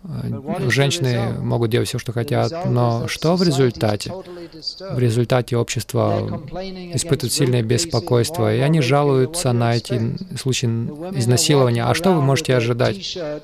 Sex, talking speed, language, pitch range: male, 125 wpm, Russian, 125-145 Hz